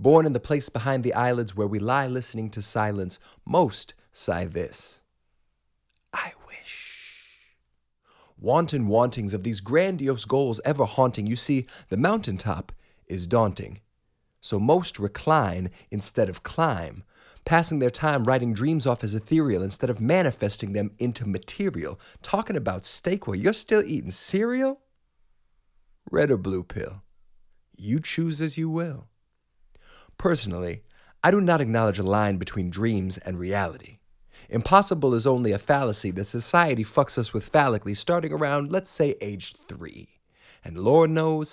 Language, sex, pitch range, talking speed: English, male, 105-150 Hz, 145 wpm